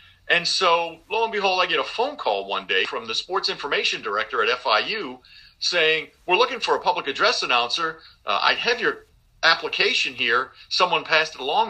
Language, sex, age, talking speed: English, male, 50-69, 190 wpm